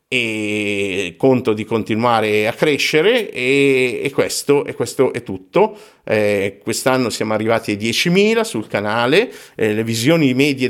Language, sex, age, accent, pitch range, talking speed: Italian, male, 50-69, native, 110-140 Hz, 140 wpm